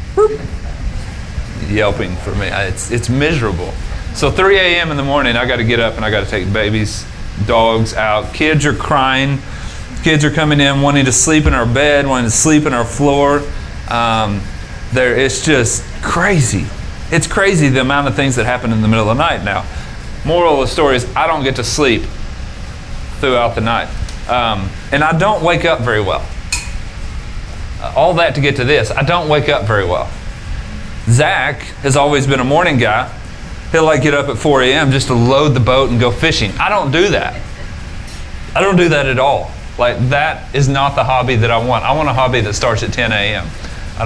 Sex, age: male, 30-49